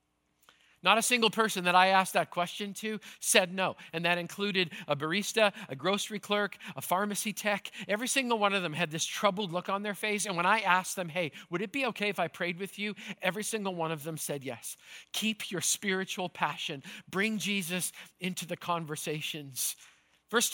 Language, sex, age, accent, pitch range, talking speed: English, male, 50-69, American, 175-215 Hz, 195 wpm